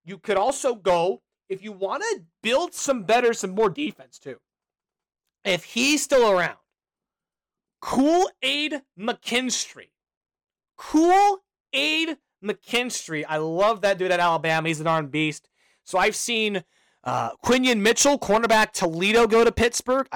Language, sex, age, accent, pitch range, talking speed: English, male, 30-49, American, 165-245 Hz, 135 wpm